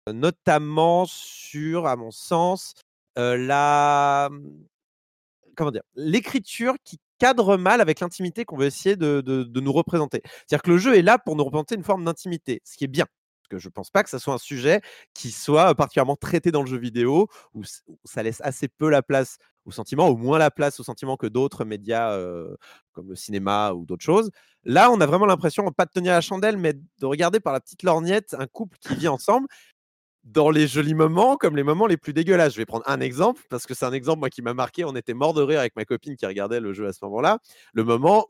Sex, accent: male, French